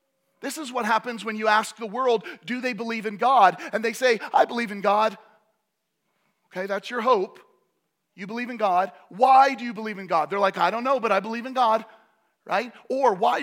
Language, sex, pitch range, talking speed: English, male, 200-260 Hz, 215 wpm